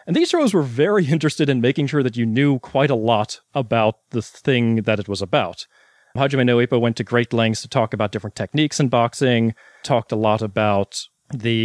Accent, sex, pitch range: American, male, 115-145 Hz